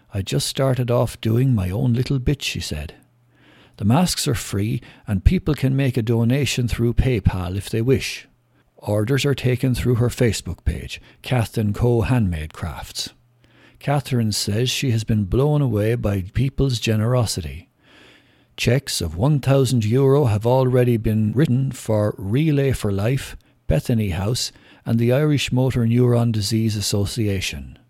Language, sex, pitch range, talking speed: English, male, 105-130 Hz, 145 wpm